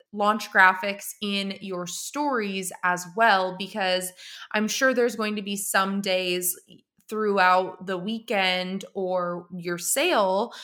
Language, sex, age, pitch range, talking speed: English, female, 20-39, 185-225 Hz, 125 wpm